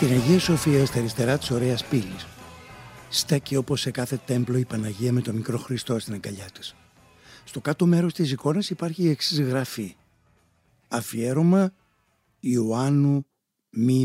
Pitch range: 120-160 Hz